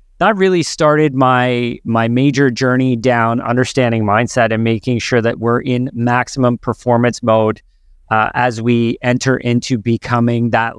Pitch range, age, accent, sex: 120-150 Hz, 30-49, American, male